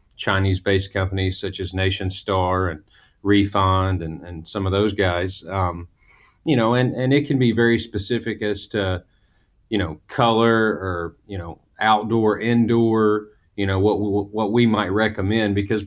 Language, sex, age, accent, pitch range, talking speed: English, male, 30-49, American, 95-105 Hz, 165 wpm